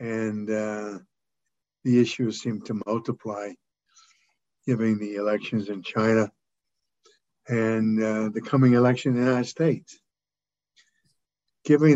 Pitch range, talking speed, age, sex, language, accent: 110-130 Hz, 110 wpm, 60-79, male, English, American